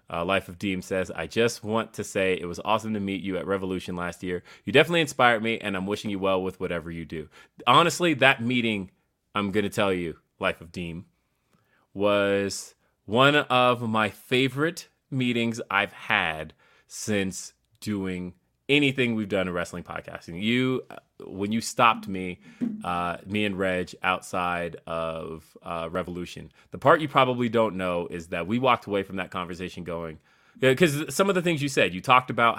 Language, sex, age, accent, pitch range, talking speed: English, male, 30-49, American, 90-110 Hz, 180 wpm